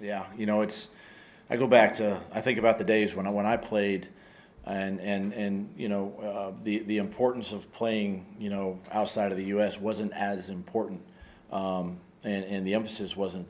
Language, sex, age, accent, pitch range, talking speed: English, male, 40-59, American, 95-110 Hz, 205 wpm